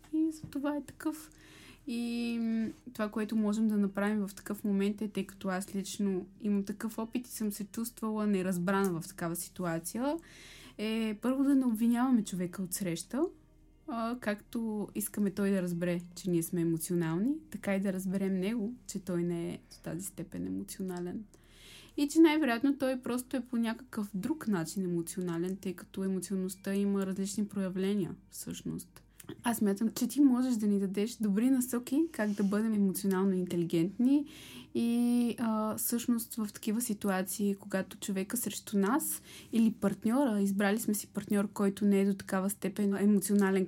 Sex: female